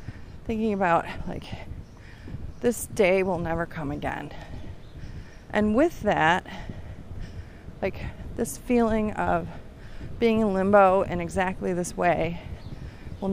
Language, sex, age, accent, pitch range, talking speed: English, female, 30-49, American, 170-235 Hz, 110 wpm